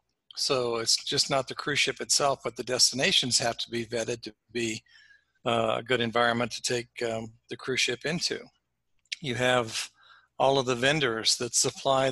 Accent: American